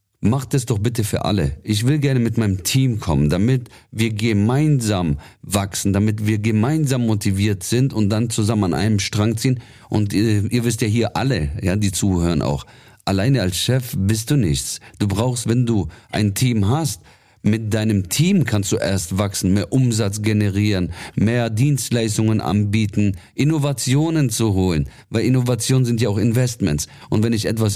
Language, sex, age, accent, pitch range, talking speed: German, male, 50-69, German, 100-125 Hz, 170 wpm